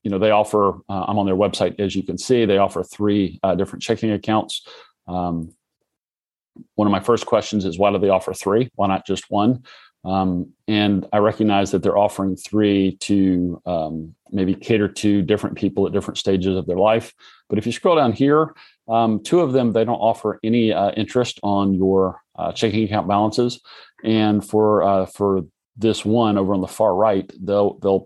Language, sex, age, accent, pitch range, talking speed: English, male, 40-59, American, 95-110 Hz, 195 wpm